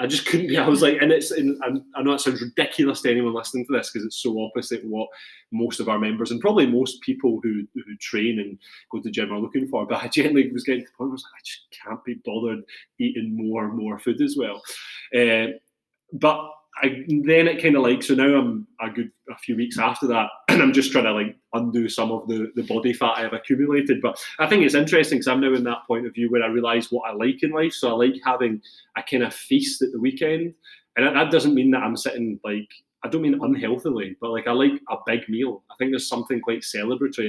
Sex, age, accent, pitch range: male, 20-39, British, 115-135 Hz